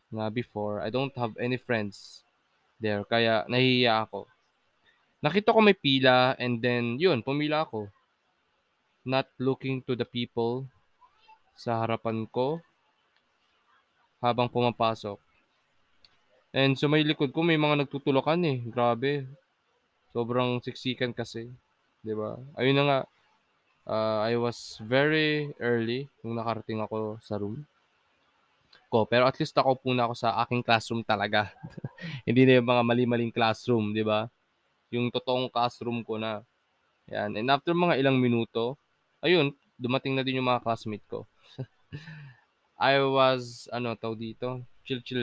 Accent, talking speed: native, 135 wpm